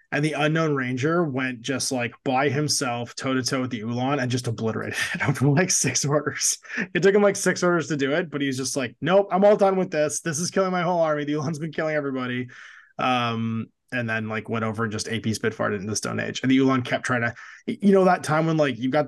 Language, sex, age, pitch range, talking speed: English, male, 20-39, 115-155 Hz, 250 wpm